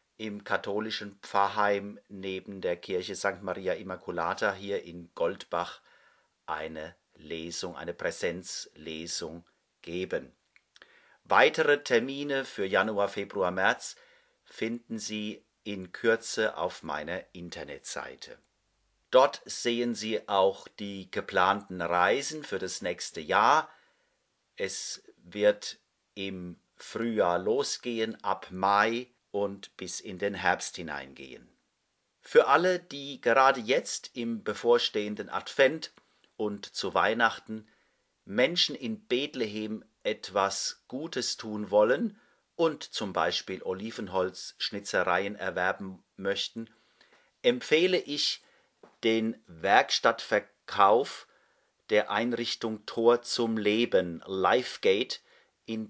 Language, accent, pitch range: German, German, 100-135 Hz